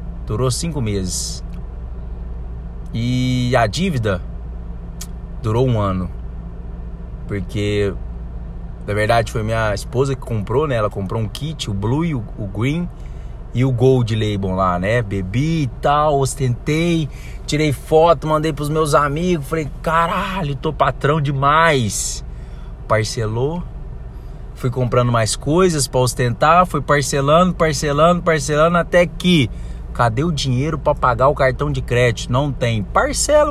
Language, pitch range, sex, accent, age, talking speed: Portuguese, 95-145 Hz, male, Brazilian, 20-39, 130 wpm